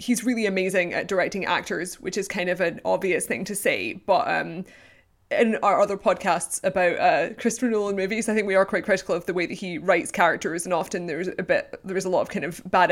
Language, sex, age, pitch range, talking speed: English, female, 20-39, 180-200 Hz, 240 wpm